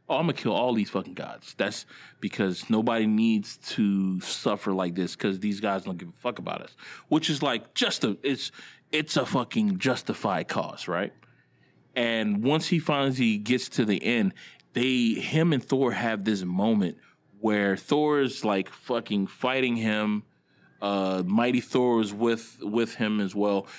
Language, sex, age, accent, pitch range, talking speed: English, male, 20-39, American, 100-130 Hz, 175 wpm